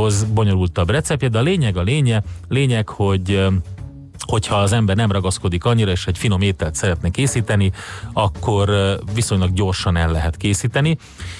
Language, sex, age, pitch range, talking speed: Hungarian, male, 30-49, 95-115 Hz, 140 wpm